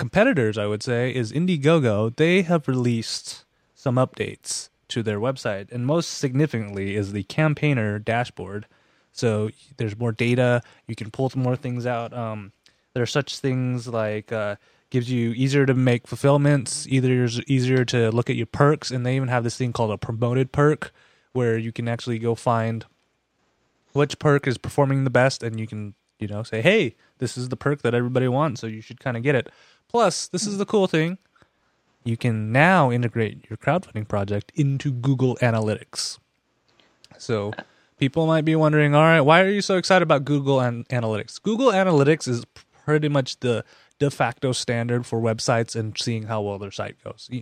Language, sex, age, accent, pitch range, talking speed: English, male, 20-39, American, 115-140 Hz, 185 wpm